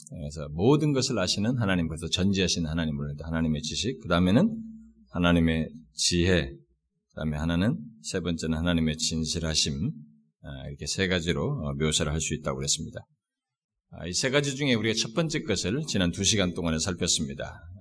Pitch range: 80-120 Hz